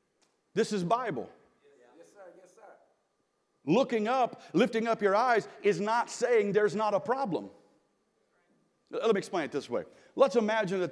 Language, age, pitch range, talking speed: English, 40-59, 200-260 Hz, 135 wpm